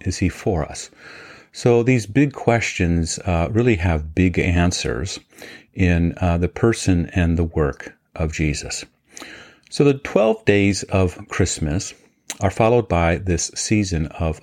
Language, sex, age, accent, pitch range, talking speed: English, male, 40-59, American, 85-95 Hz, 140 wpm